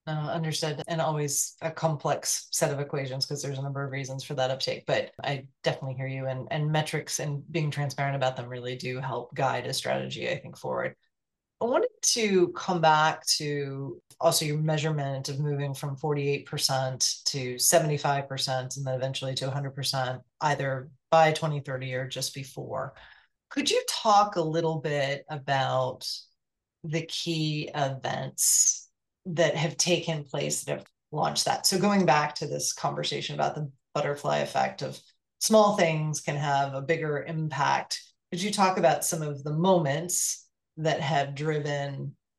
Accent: American